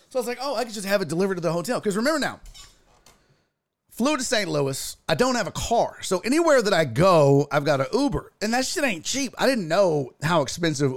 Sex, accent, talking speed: male, American, 245 wpm